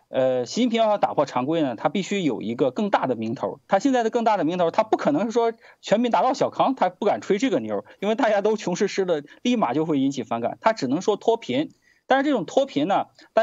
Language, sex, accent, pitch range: Chinese, male, native, 190-275 Hz